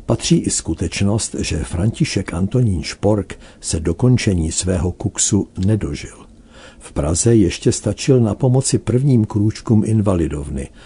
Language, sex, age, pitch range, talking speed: Czech, male, 60-79, 80-100 Hz, 115 wpm